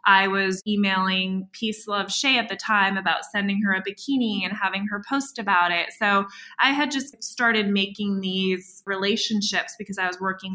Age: 20-39